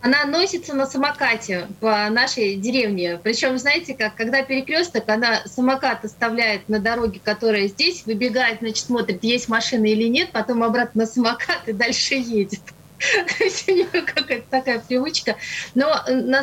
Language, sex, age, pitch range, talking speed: Russian, female, 30-49, 215-265 Hz, 135 wpm